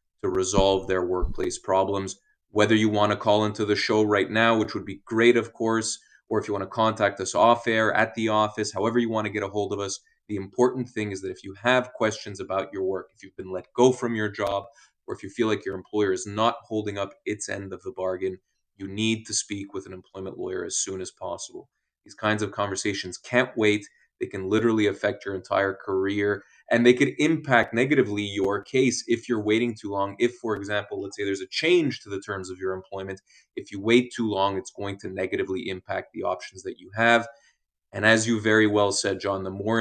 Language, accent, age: English, Canadian, 20-39